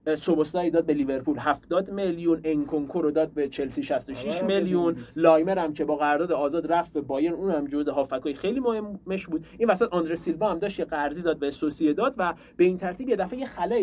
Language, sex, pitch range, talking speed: Persian, male, 145-200 Hz, 210 wpm